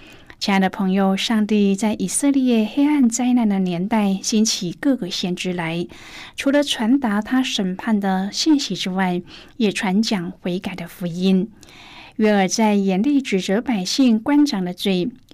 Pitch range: 185-250 Hz